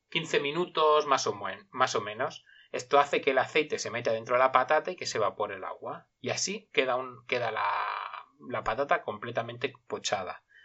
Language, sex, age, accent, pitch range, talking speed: Italian, male, 30-49, Spanish, 130-200 Hz, 180 wpm